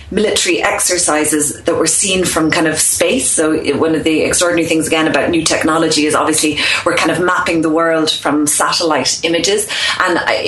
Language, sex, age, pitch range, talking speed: English, female, 30-49, 155-190 Hz, 180 wpm